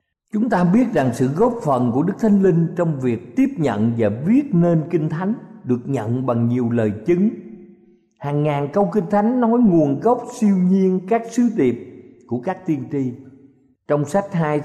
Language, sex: Thai, male